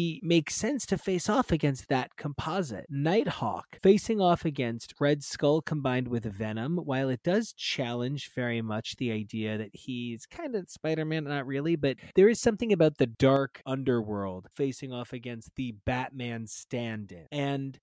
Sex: male